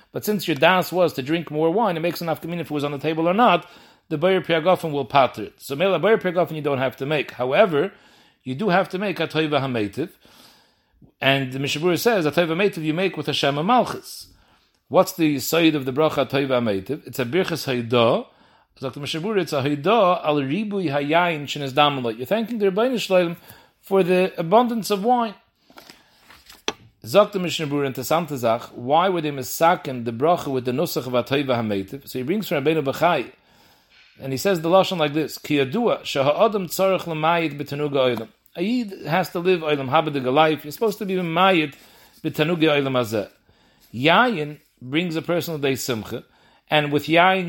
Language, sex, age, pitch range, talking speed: English, male, 40-59, 140-180 Hz, 155 wpm